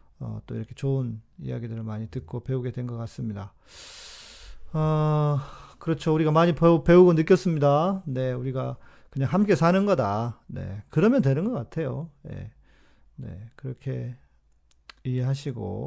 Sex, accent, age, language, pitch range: male, native, 40-59, Korean, 120-155 Hz